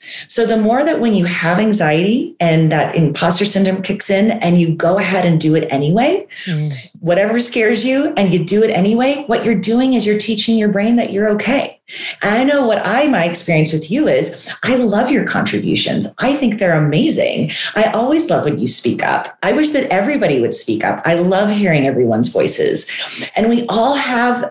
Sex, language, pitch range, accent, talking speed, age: female, English, 190-245 Hz, American, 200 wpm, 30-49